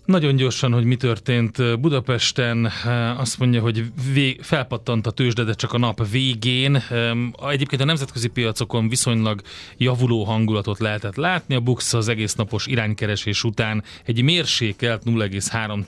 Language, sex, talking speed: Hungarian, male, 130 wpm